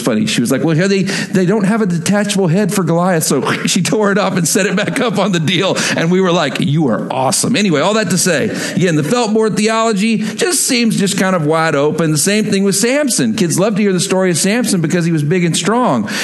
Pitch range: 180-240 Hz